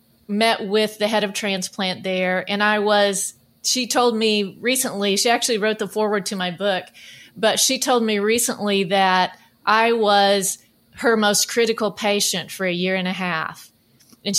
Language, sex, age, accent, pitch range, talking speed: English, female, 30-49, American, 195-230 Hz, 170 wpm